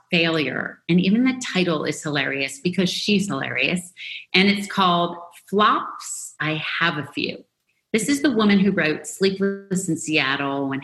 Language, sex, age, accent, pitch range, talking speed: English, female, 40-59, American, 160-210 Hz, 155 wpm